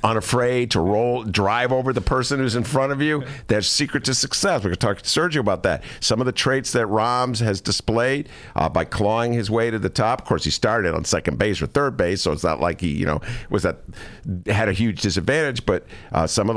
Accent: American